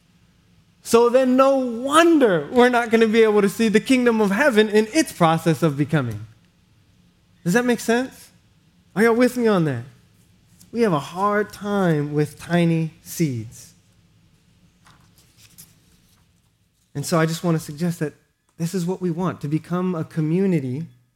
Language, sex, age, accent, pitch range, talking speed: English, male, 20-39, American, 130-185 Hz, 160 wpm